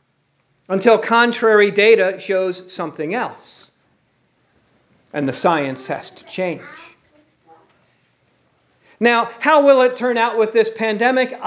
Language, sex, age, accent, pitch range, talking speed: English, male, 50-69, American, 190-245 Hz, 110 wpm